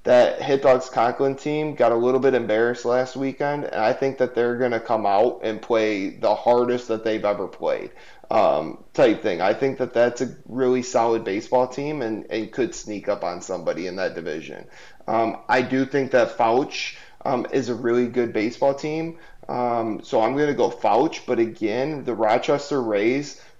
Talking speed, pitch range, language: 190 wpm, 110-140 Hz, English